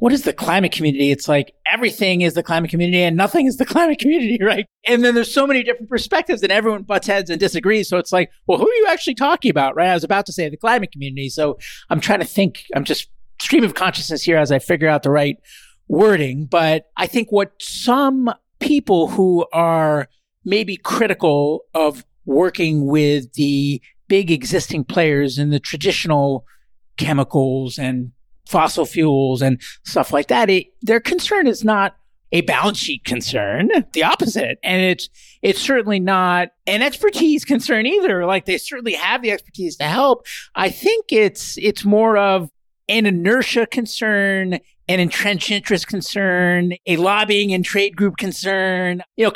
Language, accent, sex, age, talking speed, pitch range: English, American, male, 50-69, 175 wpm, 165-220 Hz